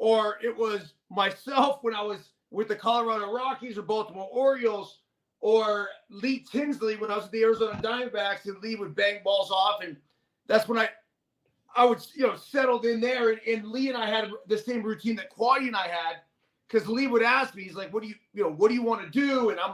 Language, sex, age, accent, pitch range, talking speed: English, male, 30-49, American, 205-255 Hz, 230 wpm